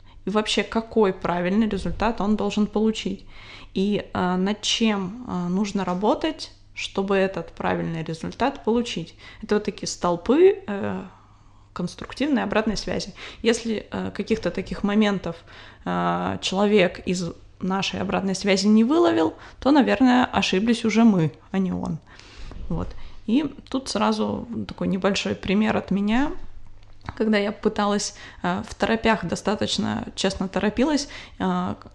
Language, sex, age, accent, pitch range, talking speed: Russian, female, 20-39, native, 185-230 Hz, 120 wpm